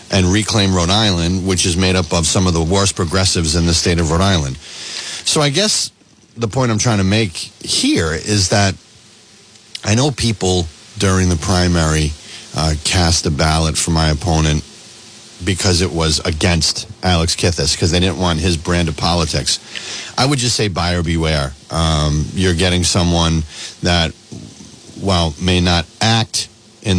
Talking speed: 165 wpm